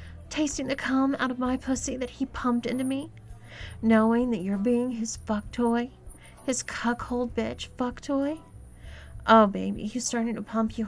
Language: English